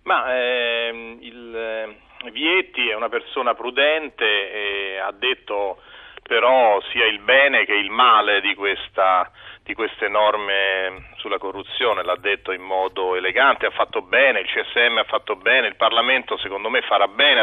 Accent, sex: native, male